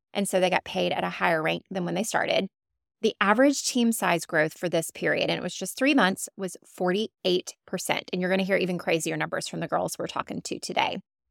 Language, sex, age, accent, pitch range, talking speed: English, female, 20-39, American, 175-215 Hz, 235 wpm